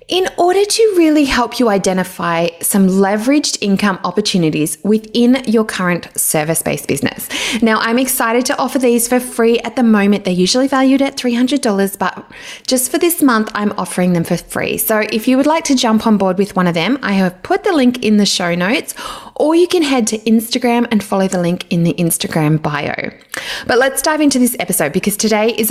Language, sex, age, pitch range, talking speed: English, female, 20-39, 195-265 Hz, 205 wpm